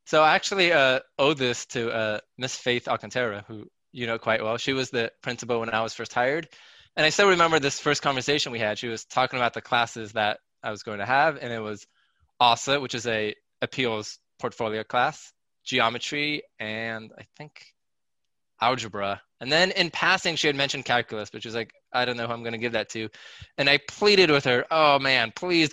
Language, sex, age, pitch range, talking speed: English, male, 20-39, 115-145 Hz, 210 wpm